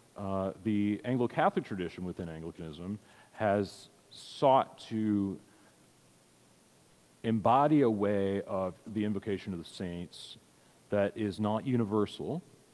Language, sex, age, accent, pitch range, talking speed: English, male, 40-59, American, 95-115 Hz, 105 wpm